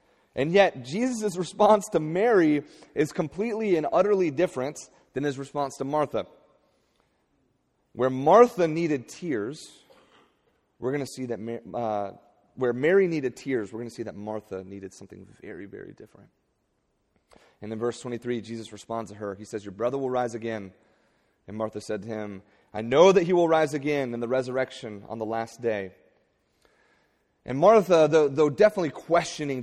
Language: English